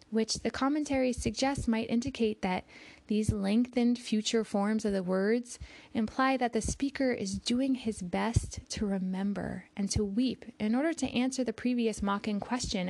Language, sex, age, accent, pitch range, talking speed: English, female, 20-39, American, 185-230 Hz, 165 wpm